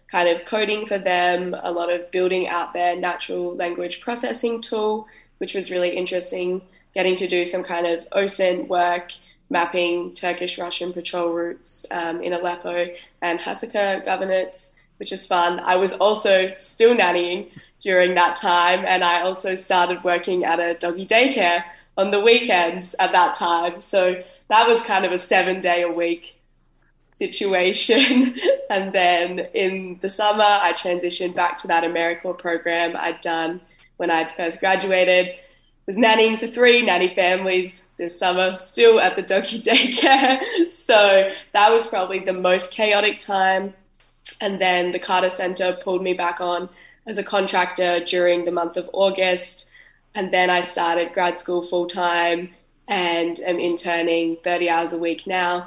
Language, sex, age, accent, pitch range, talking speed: English, female, 10-29, Australian, 175-195 Hz, 155 wpm